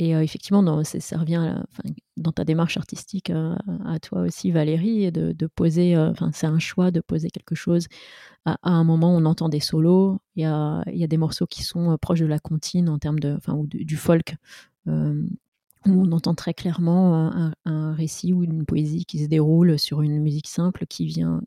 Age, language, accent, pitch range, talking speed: 30-49, French, French, 160-180 Hz, 220 wpm